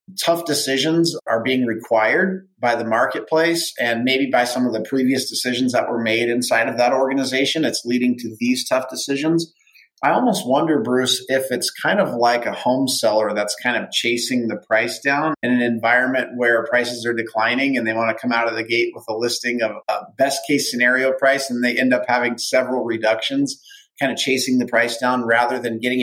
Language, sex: English, male